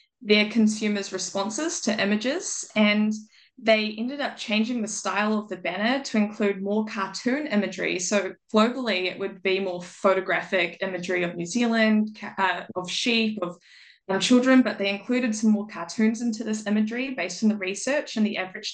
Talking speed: 170 wpm